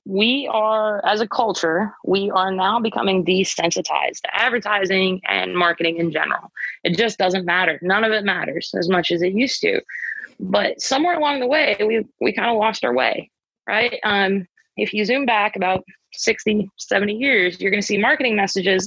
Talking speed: 185 wpm